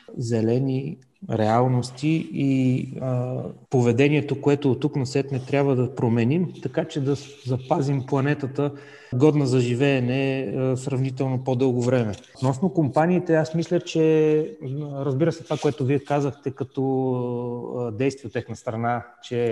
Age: 30-49